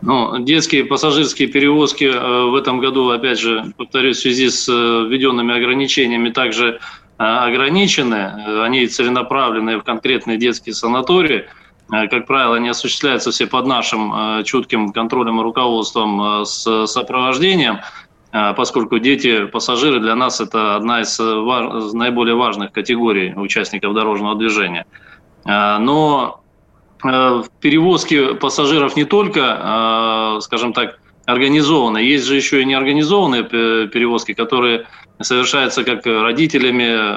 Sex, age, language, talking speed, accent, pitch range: male, 20-39, Russian, 110 wpm, native, 115-135 Hz